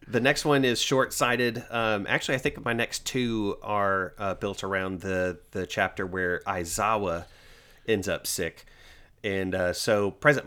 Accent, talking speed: American, 160 wpm